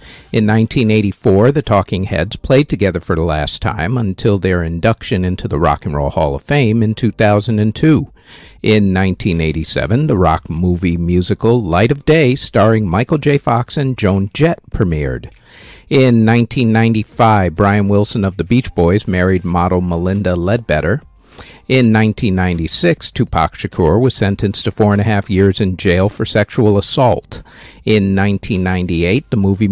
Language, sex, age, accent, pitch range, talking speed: English, male, 50-69, American, 90-120 Hz, 150 wpm